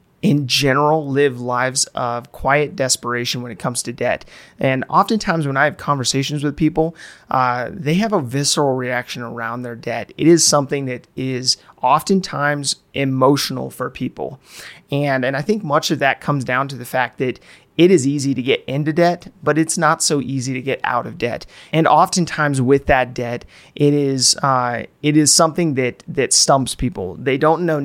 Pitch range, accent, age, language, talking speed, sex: 130-150 Hz, American, 30-49, English, 185 wpm, male